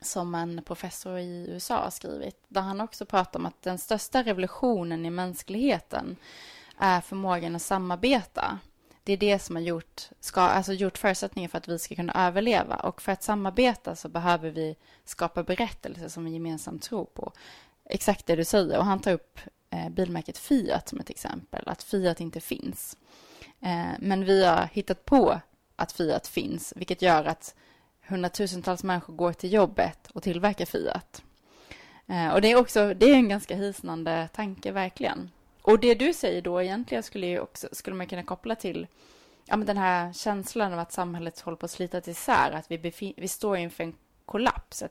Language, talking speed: Swedish, 180 wpm